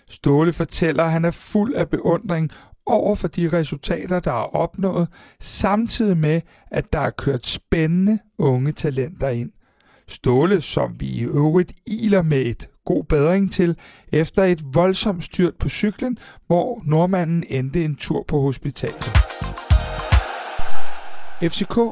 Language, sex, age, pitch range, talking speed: Danish, male, 60-79, 150-190 Hz, 135 wpm